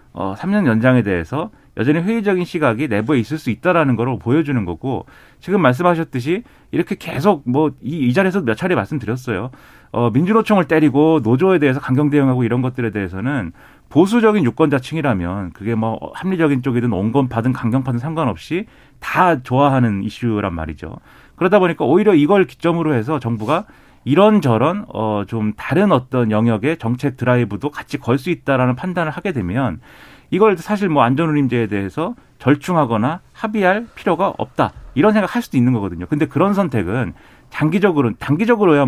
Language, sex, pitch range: Korean, male, 115-160 Hz